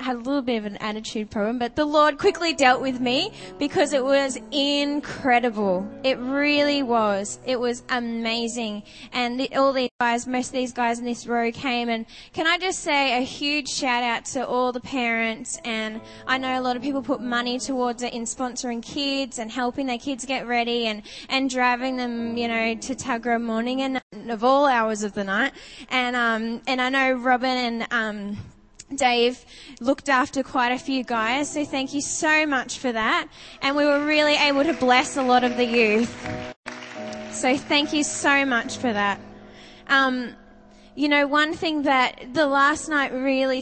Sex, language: female, English